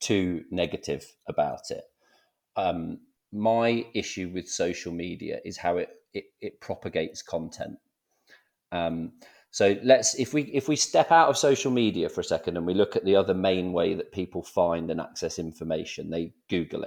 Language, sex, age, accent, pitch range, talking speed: English, male, 40-59, British, 90-135 Hz, 170 wpm